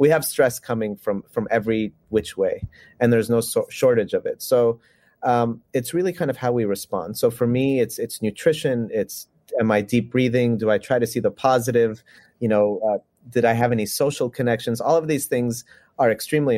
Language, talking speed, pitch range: English, 205 wpm, 110-135 Hz